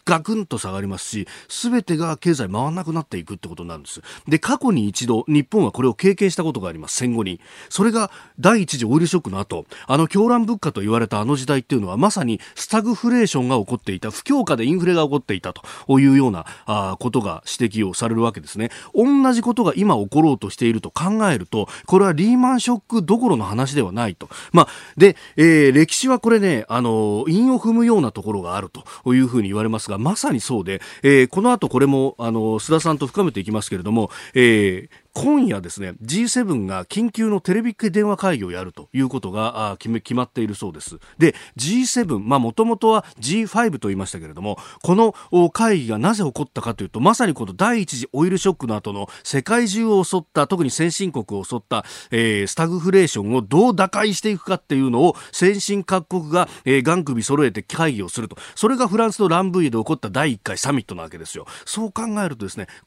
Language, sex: Japanese, male